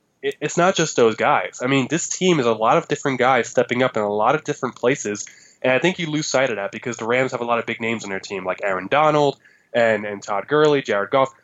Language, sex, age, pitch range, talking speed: English, male, 20-39, 115-145 Hz, 275 wpm